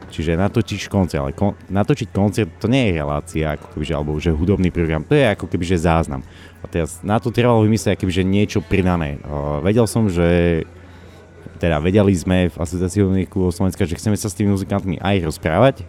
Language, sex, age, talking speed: Slovak, male, 30-49, 185 wpm